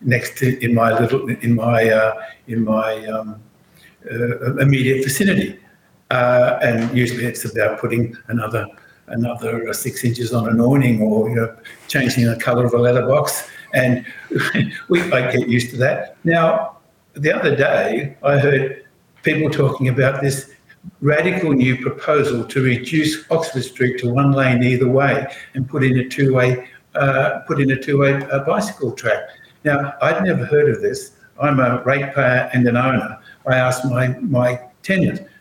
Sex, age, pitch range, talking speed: male, 60-79, 120-145 Hz, 160 wpm